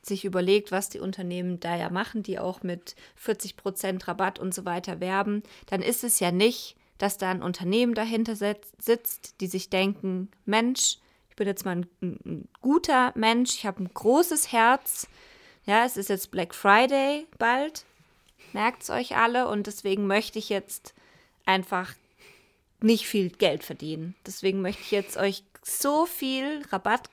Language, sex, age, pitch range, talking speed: German, female, 20-39, 185-215 Hz, 160 wpm